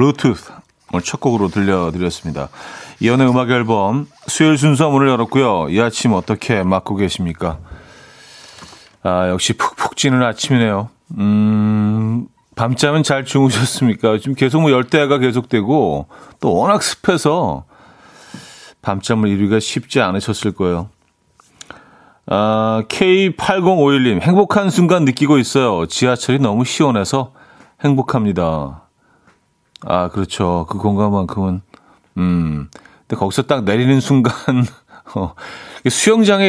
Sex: male